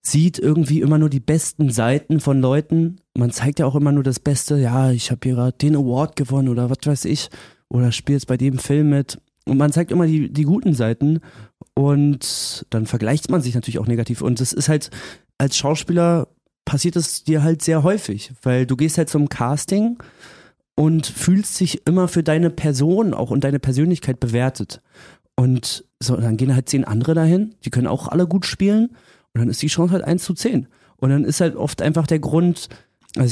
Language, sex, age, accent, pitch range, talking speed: German, male, 30-49, German, 125-155 Hz, 205 wpm